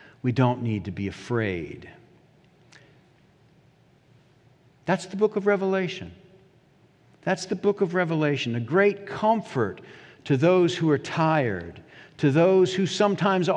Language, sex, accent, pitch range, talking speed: English, male, American, 125-165 Hz, 125 wpm